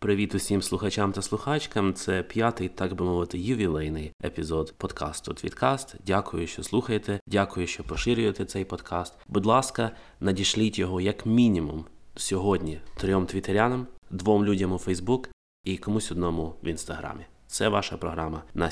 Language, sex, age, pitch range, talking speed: Ukrainian, male, 20-39, 85-100 Hz, 140 wpm